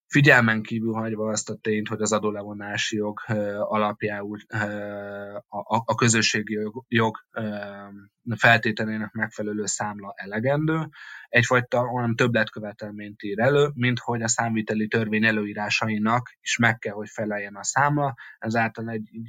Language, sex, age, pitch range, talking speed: Hungarian, male, 20-39, 105-115 Hz, 115 wpm